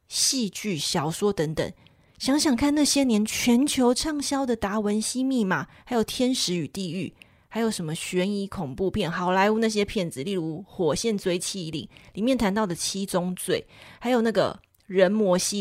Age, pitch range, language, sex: 20-39, 180-245 Hz, Chinese, female